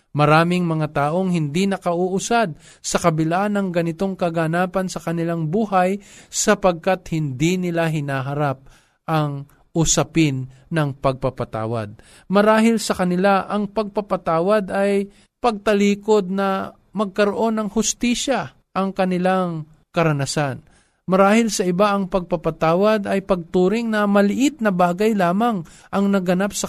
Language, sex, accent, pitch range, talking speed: Filipino, male, native, 140-195 Hz, 110 wpm